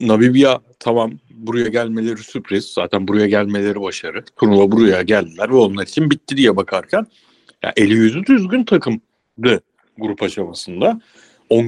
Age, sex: 60-79, male